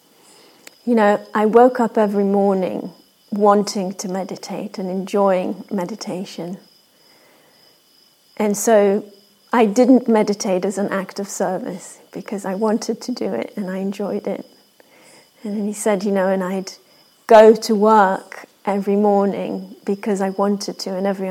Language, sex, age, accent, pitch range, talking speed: English, female, 30-49, British, 195-225 Hz, 145 wpm